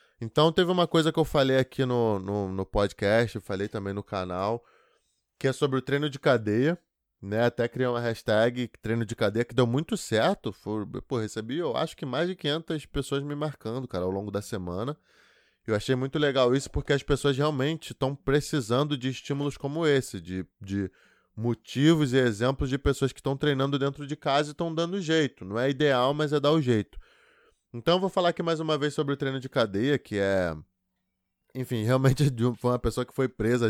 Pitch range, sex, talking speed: 115-145 Hz, male, 210 wpm